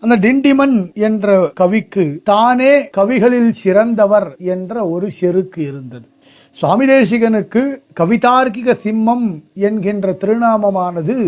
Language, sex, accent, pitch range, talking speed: Tamil, male, native, 170-230 Hz, 85 wpm